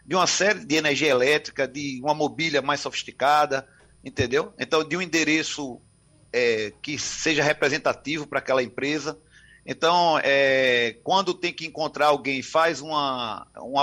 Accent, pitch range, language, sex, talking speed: Brazilian, 135-170 Hz, Portuguese, male, 140 wpm